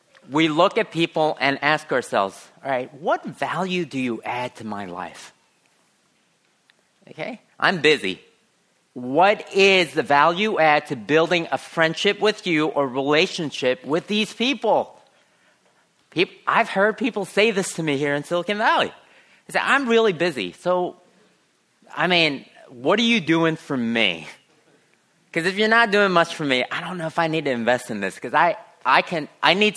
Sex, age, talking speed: male, 30-49, 170 wpm